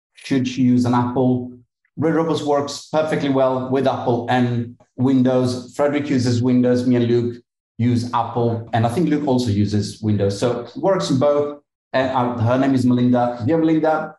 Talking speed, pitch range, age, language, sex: 175 wpm, 110-130 Hz, 30-49, English, male